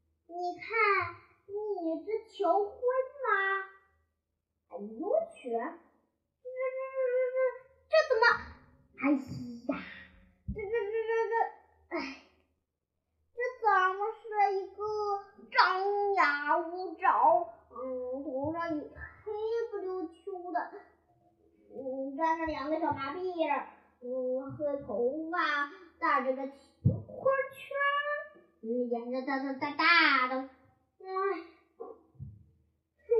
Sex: male